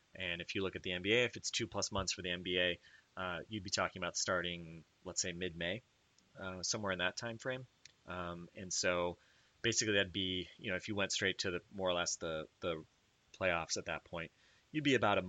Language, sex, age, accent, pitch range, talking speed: English, male, 30-49, American, 90-120 Hz, 220 wpm